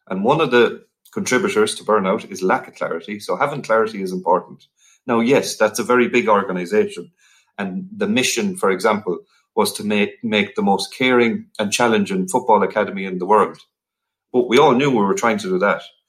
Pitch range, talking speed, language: 105-140 Hz, 195 wpm, English